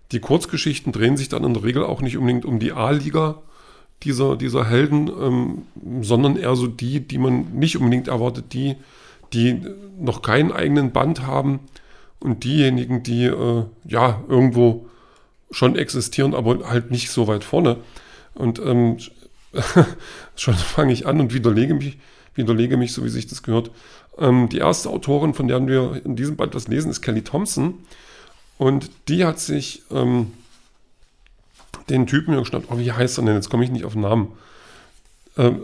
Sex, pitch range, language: male, 115-140 Hz, German